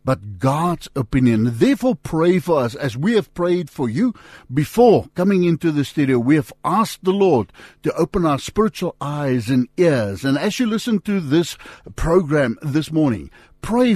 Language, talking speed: English, 170 wpm